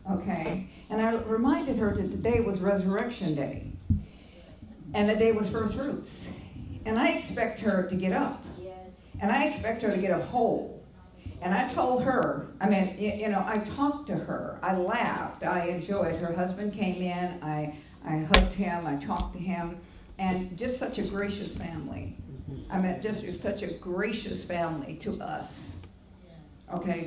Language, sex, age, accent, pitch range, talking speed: English, female, 50-69, American, 155-200 Hz, 165 wpm